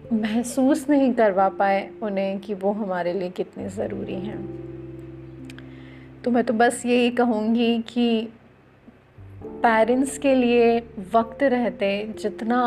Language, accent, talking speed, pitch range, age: Hindi, native, 120 wpm, 205-250 Hz, 30-49